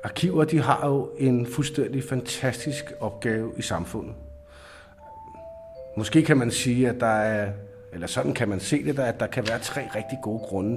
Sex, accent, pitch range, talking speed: male, native, 115-150 Hz, 175 wpm